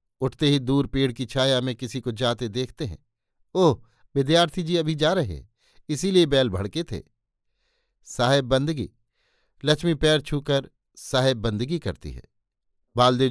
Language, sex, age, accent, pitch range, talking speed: Hindi, male, 50-69, native, 110-145 Hz, 150 wpm